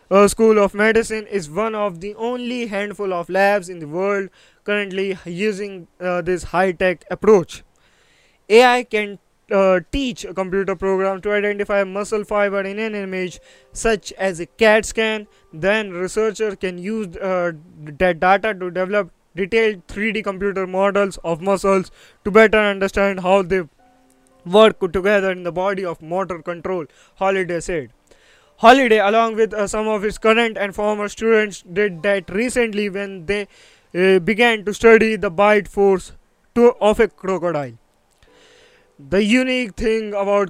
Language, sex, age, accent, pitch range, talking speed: English, male, 20-39, Indian, 185-215 Hz, 150 wpm